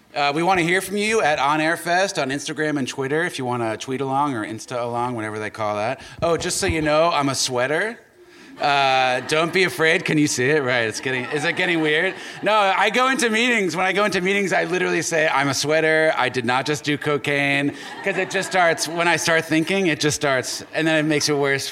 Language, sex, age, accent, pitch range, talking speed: English, male, 30-49, American, 125-165 Hz, 245 wpm